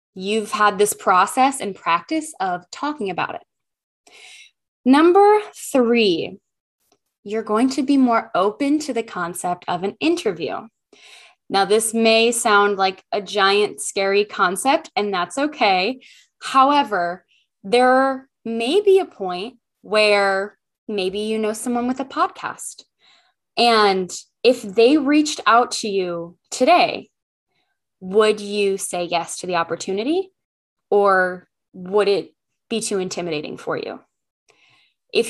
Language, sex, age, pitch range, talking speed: English, female, 10-29, 195-275 Hz, 125 wpm